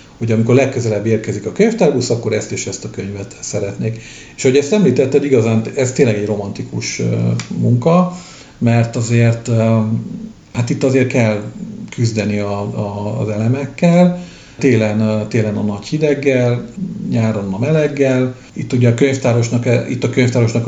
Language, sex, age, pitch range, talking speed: Hungarian, male, 50-69, 110-130 Hz, 135 wpm